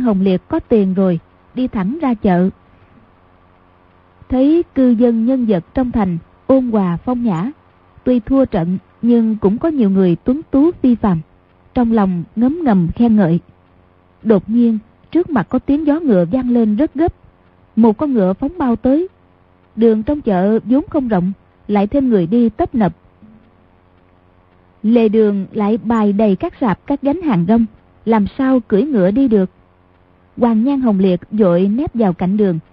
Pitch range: 180-255 Hz